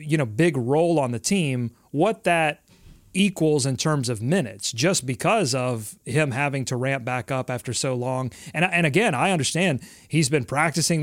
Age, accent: 30-49, American